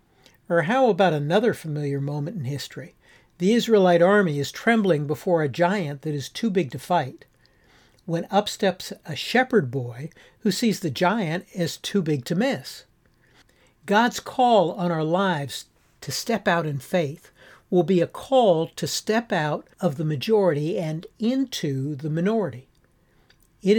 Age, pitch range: 60-79, 145-200 Hz